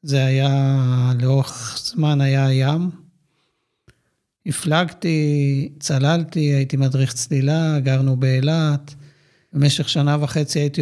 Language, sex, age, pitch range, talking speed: Hebrew, male, 50-69, 140-160 Hz, 95 wpm